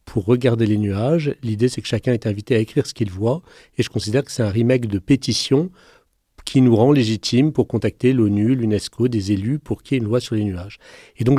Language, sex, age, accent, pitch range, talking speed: French, male, 40-59, French, 115-155 Hz, 235 wpm